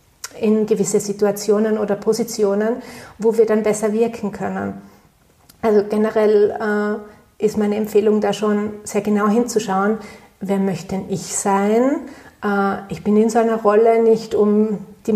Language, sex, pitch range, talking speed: German, female, 205-230 Hz, 145 wpm